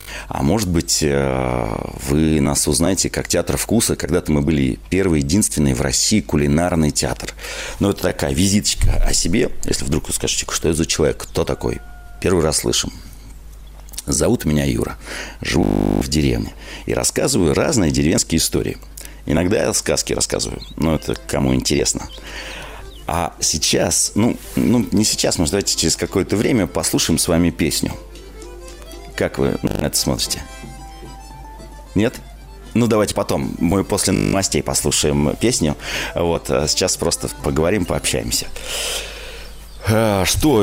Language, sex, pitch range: Russian, male, 75-105 Hz